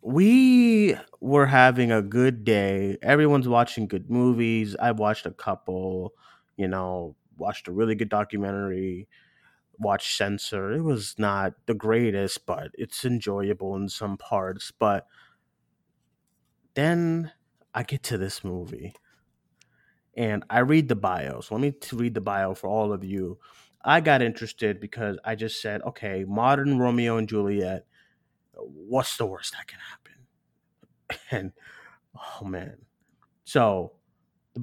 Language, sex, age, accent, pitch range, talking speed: English, male, 30-49, American, 105-140 Hz, 135 wpm